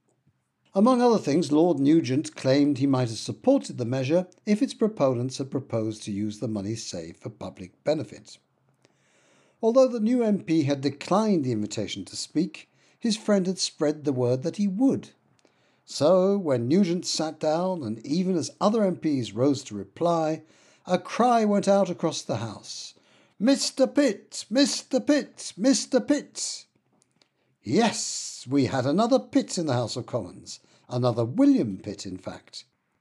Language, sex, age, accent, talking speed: English, male, 60-79, British, 155 wpm